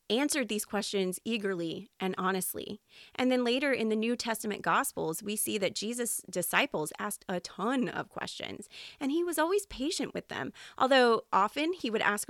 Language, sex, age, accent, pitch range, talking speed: English, female, 30-49, American, 185-225 Hz, 175 wpm